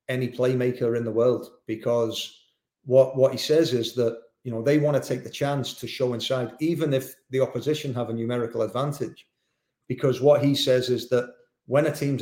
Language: English